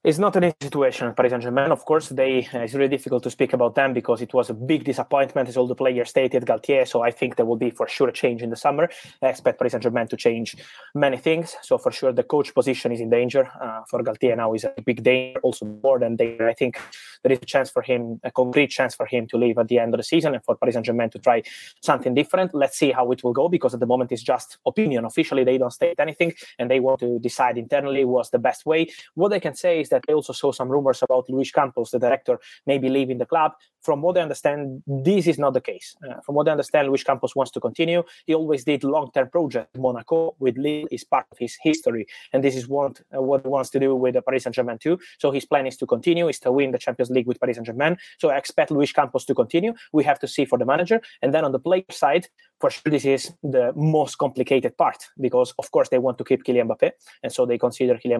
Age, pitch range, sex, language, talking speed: 20-39, 125-155 Hz, male, English, 260 wpm